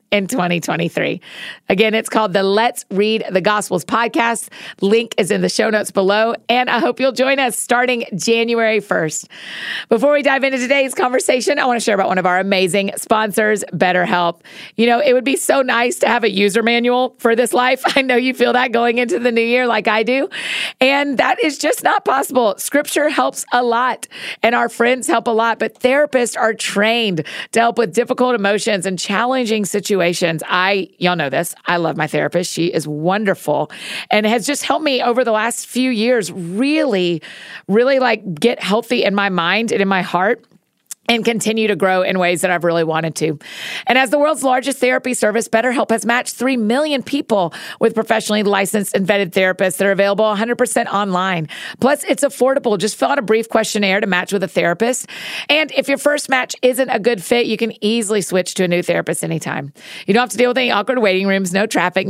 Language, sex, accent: English, female, American